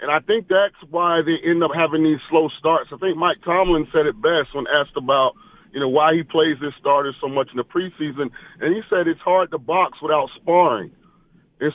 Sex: male